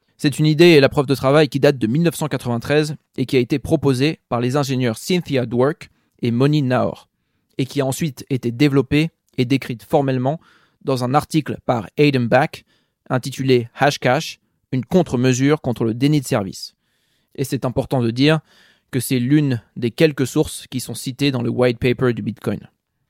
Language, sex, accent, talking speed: French, male, French, 185 wpm